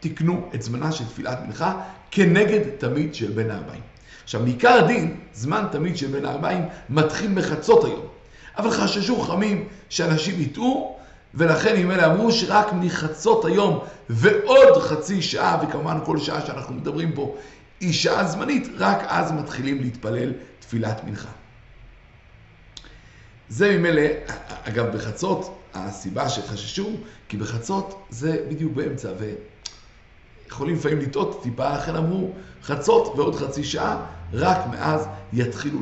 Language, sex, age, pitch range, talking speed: Hebrew, male, 50-69, 115-195 Hz, 130 wpm